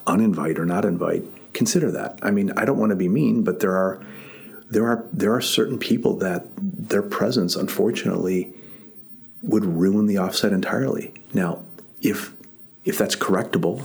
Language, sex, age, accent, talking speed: English, male, 40-59, American, 160 wpm